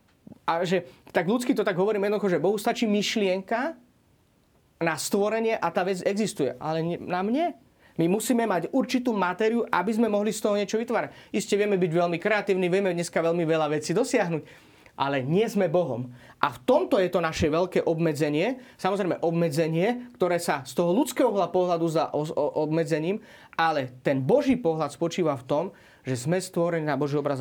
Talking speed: 175 wpm